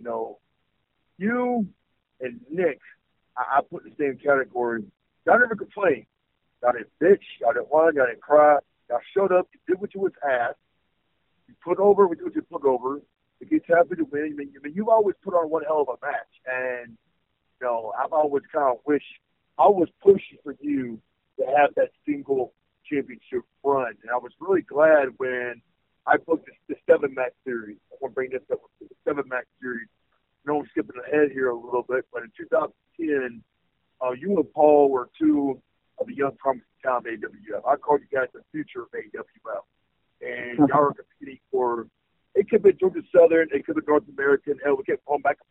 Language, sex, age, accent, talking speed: English, male, 50-69, American, 205 wpm